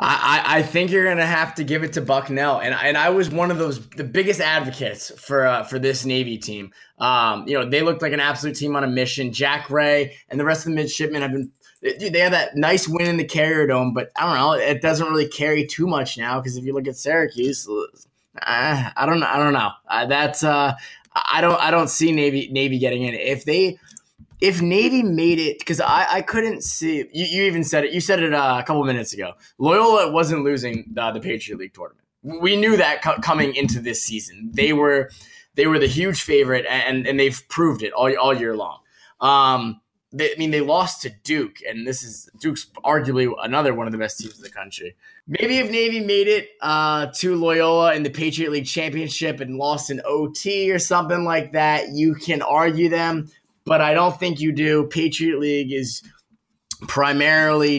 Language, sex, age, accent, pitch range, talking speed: English, male, 20-39, American, 130-165 Hz, 220 wpm